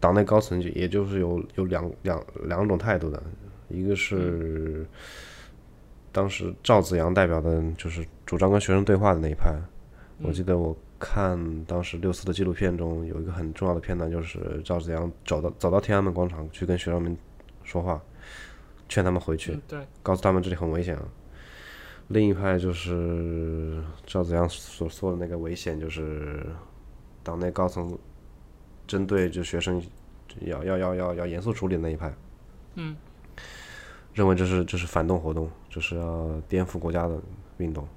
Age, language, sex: 20-39, Chinese, male